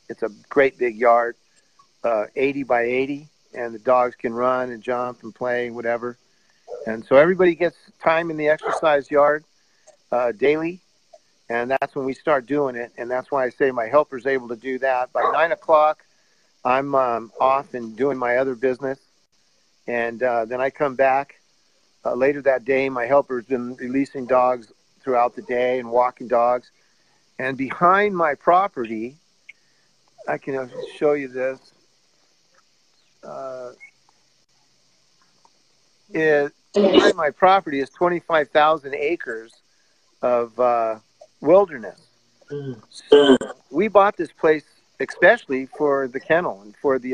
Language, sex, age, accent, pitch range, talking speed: English, male, 50-69, American, 125-150 Hz, 140 wpm